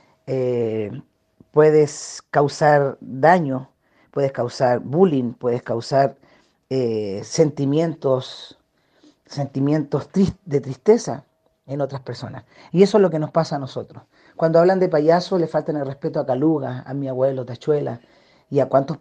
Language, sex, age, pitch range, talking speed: Spanish, female, 40-59, 140-190 Hz, 140 wpm